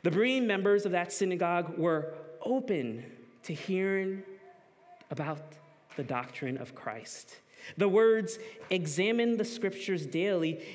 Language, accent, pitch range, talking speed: English, American, 160-215 Hz, 115 wpm